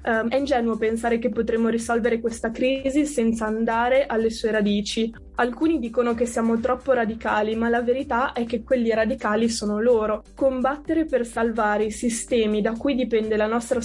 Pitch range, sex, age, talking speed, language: 215-245 Hz, female, 20-39, 170 wpm, Italian